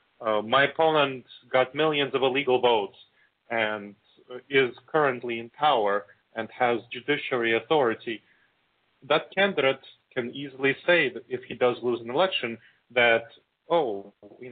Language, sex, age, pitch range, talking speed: English, male, 30-49, 120-155 Hz, 130 wpm